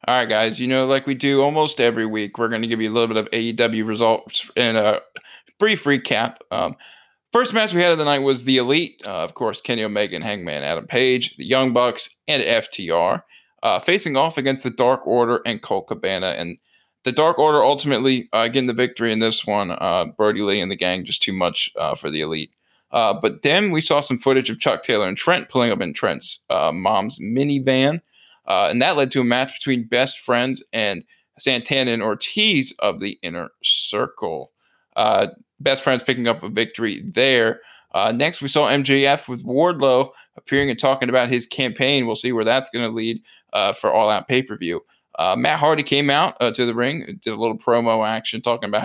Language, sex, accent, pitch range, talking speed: English, male, American, 115-140 Hz, 210 wpm